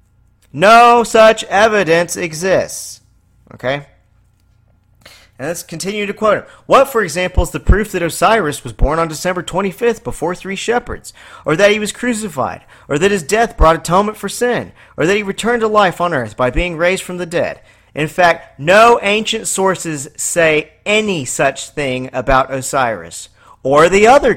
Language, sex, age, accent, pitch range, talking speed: English, male, 40-59, American, 120-185 Hz, 165 wpm